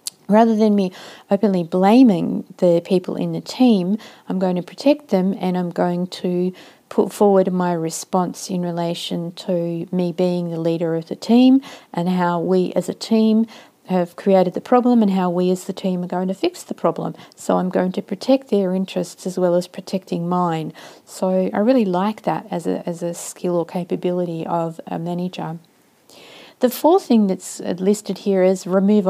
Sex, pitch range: female, 175-215 Hz